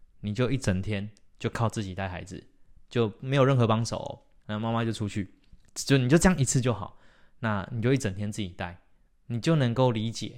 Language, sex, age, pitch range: Chinese, male, 20-39, 105-125 Hz